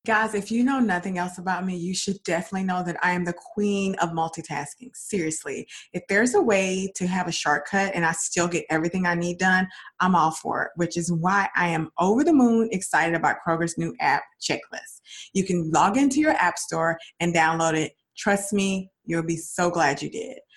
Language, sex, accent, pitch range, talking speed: English, female, American, 170-210 Hz, 210 wpm